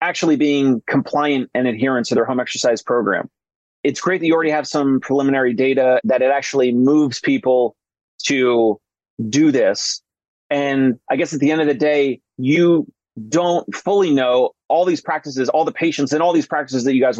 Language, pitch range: English, 135-160 Hz